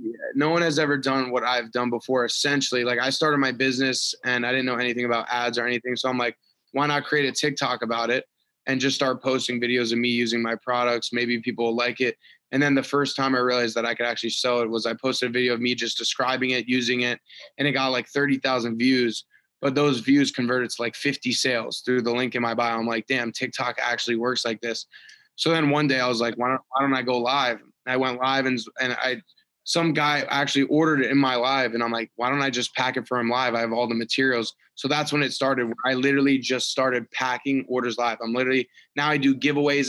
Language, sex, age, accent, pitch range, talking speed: English, male, 20-39, American, 120-140 Hz, 250 wpm